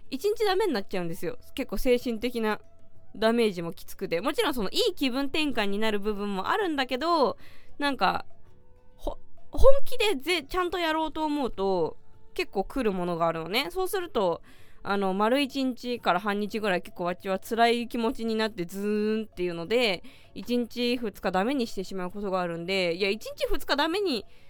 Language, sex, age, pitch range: Japanese, female, 20-39, 200-305 Hz